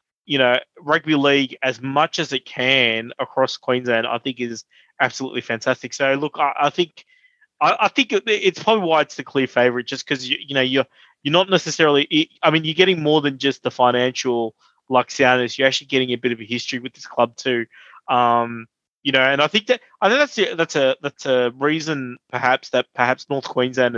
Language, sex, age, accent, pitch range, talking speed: English, male, 20-39, Australian, 125-150 Hz, 210 wpm